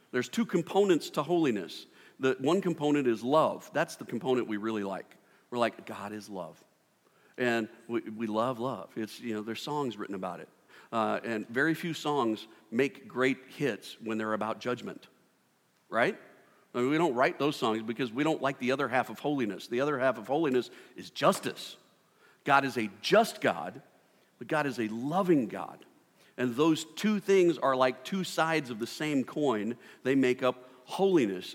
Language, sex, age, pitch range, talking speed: English, male, 50-69, 120-170 Hz, 185 wpm